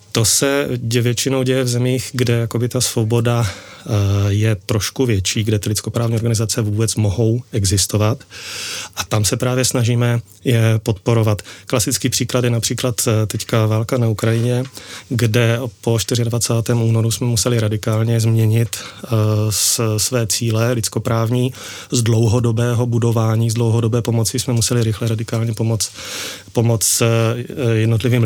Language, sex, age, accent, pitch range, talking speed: Czech, male, 30-49, native, 110-120 Hz, 125 wpm